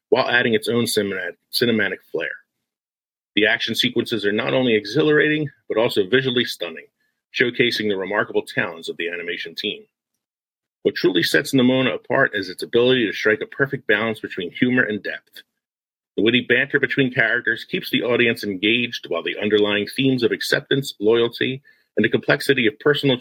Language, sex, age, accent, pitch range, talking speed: English, male, 40-59, American, 110-140 Hz, 165 wpm